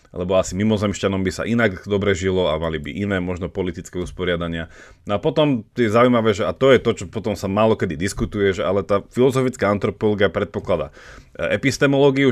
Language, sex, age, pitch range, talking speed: Slovak, male, 30-49, 95-120 Hz, 185 wpm